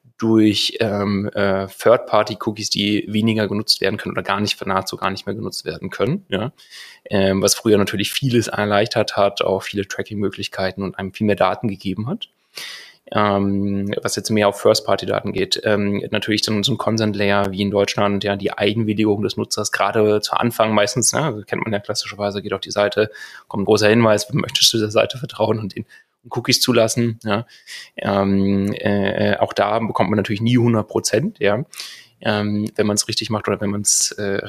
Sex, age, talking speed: male, 30-49, 185 wpm